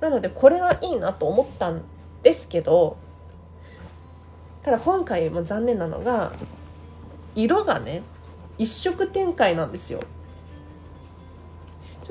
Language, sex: Japanese, female